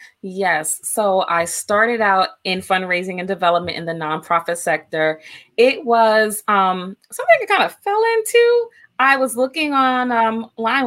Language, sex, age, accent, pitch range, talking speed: English, female, 20-39, American, 170-230 Hz, 150 wpm